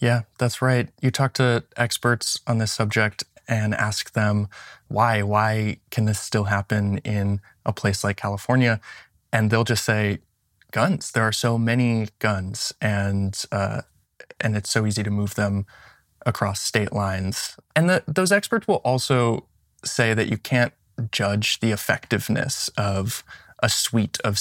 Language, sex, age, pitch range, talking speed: English, male, 20-39, 105-120 Hz, 155 wpm